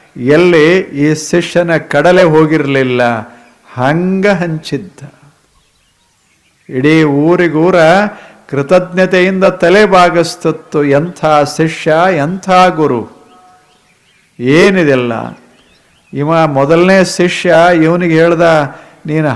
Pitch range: 150-185 Hz